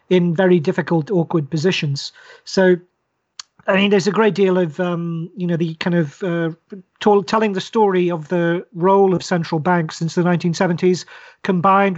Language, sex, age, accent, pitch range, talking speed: English, male, 40-59, British, 165-190 Hz, 165 wpm